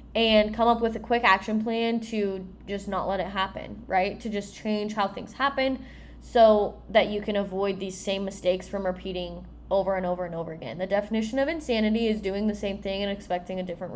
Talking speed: 215 wpm